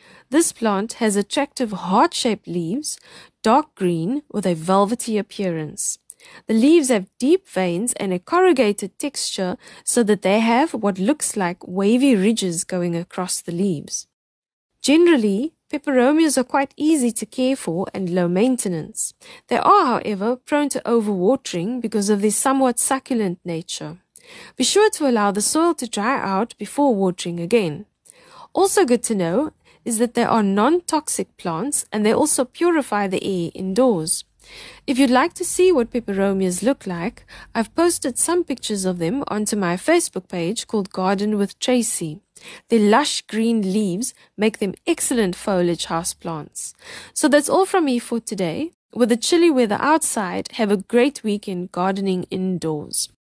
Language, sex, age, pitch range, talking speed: English, female, 20-39, 190-275 Hz, 155 wpm